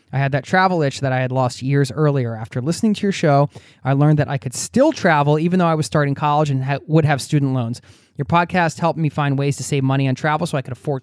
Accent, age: American, 20-39